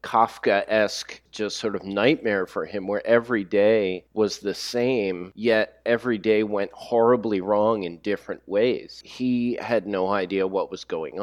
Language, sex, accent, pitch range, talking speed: English, male, American, 95-120 Hz, 160 wpm